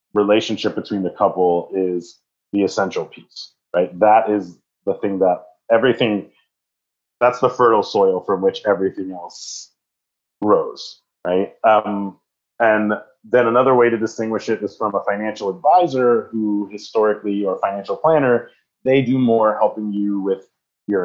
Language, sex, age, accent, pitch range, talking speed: English, male, 30-49, American, 100-120 Hz, 145 wpm